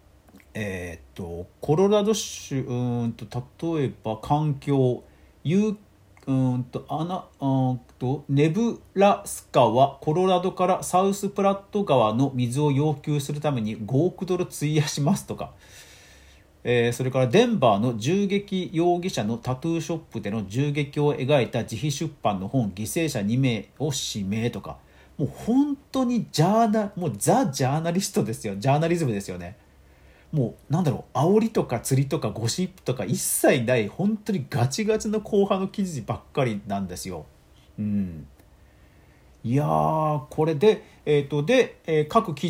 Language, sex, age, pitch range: Japanese, male, 40-59, 110-180 Hz